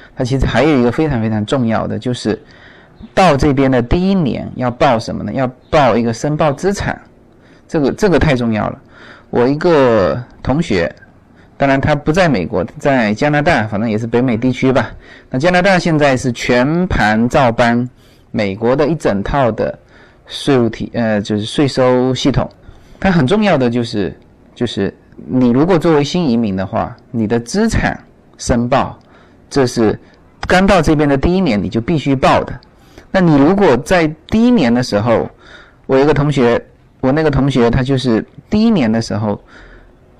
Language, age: Chinese, 20-39